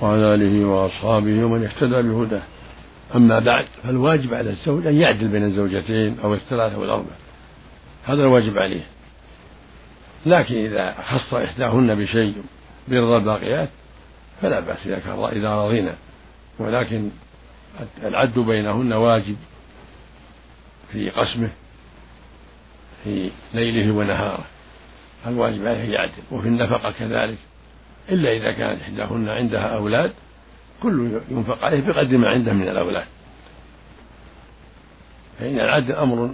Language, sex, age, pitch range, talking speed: Arabic, male, 60-79, 100-125 Hz, 110 wpm